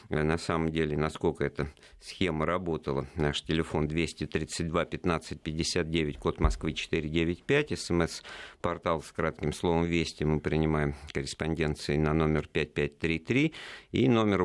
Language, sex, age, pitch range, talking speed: Russian, male, 50-69, 75-90 Hz, 115 wpm